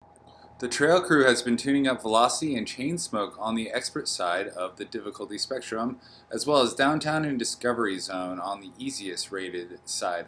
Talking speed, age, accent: 180 wpm, 30-49, American